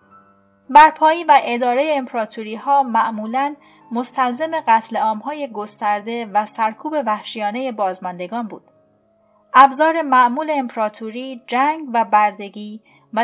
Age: 30-49